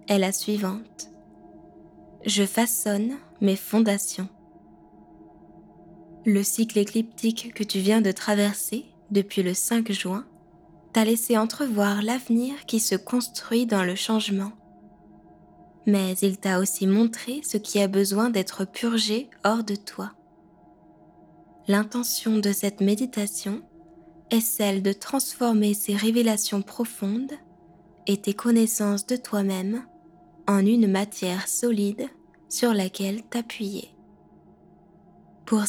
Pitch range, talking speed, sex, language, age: 195-230 Hz, 115 wpm, female, French, 20-39